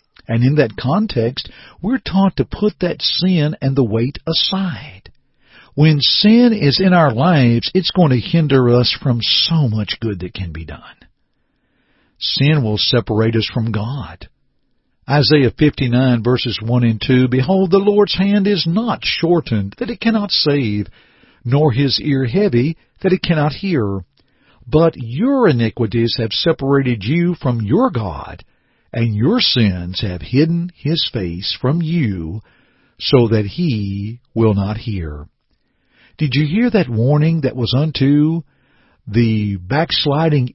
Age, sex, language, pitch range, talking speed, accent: 50-69, male, English, 115-175 Hz, 145 wpm, American